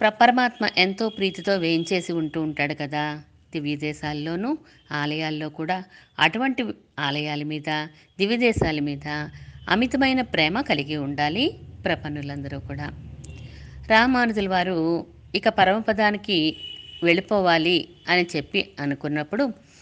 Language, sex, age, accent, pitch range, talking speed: Telugu, female, 50-69, native, 155-225 Hz, 95 wpm